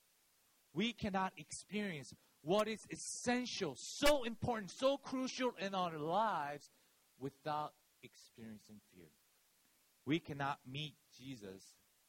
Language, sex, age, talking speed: English, male, 40-59, 100 wpm